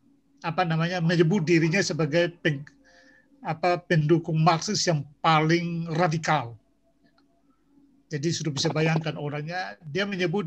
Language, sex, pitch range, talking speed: Indonesian, male, 155-185 Hz, 110 wpm